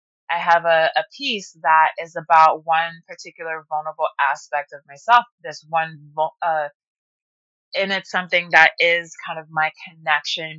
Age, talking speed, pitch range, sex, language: 20-39, 145 wpm, 150-175 Hz, female, English